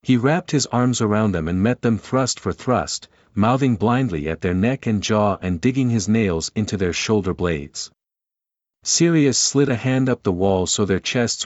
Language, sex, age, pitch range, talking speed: English, male, 50-69, 95-125 Hz, 195 wpm